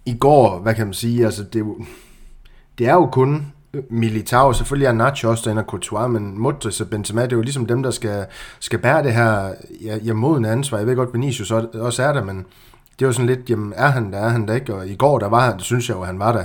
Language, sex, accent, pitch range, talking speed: Danish, male, native, 105-125 Hz, 275 wpm